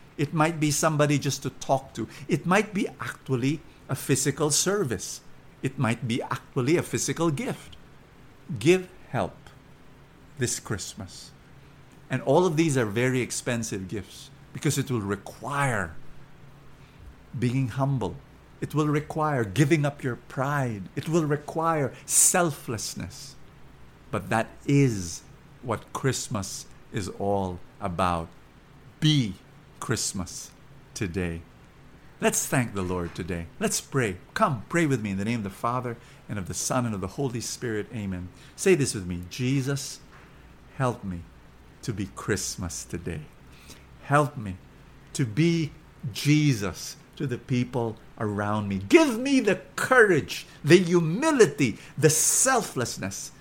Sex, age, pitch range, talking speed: male, 50-69, 110-150 Hz, 135 wpm